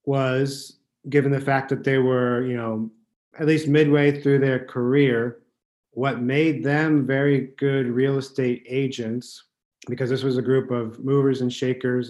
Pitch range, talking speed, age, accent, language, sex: 125-140 Hz, 160 wpm, 40-59, American, English, male